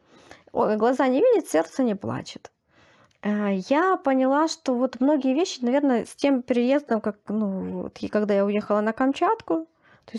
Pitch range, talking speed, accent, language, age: 200-275 Hz, 140 wpm, native, Russian, 20-39